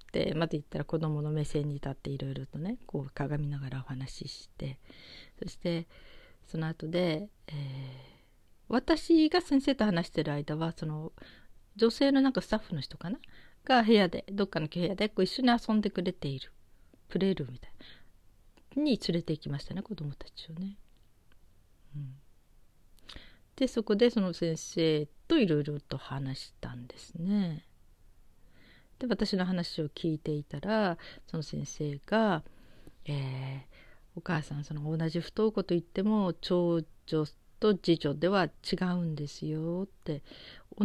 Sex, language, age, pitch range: female, Japanese, 40-59, 150-210 Hz